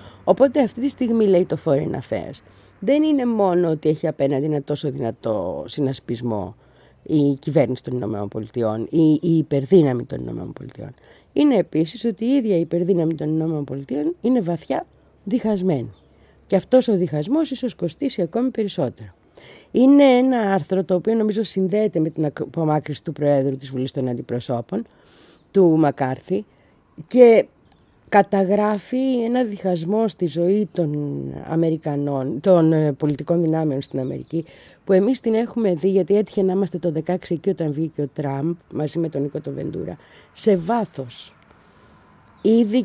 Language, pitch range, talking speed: Greek, 140-200 Hz, 145 wpm